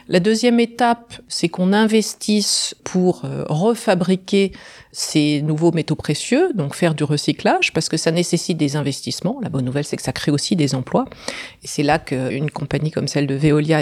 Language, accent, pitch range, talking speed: English, French, 150-205 Hz, 180 wpm